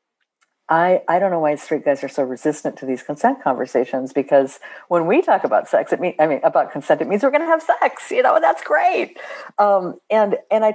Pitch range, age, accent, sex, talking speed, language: 145-195 Hz, 50-69, American, female, 235 wpm, English